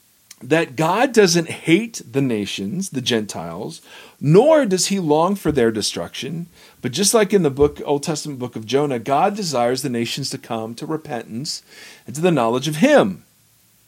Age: 40-59